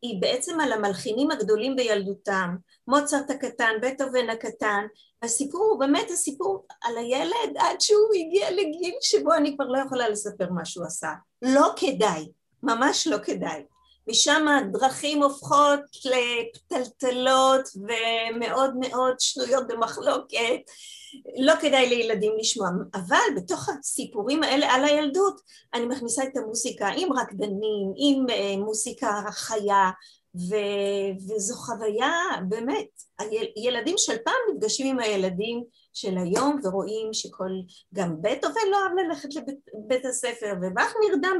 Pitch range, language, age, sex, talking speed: 210-290 Hz, Hebrew, 30-49, female, 125 wpm